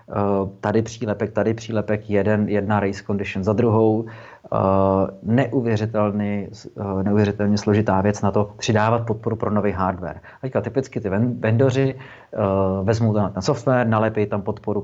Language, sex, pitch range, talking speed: Czech, male, 100-115 Hz, 140 wpm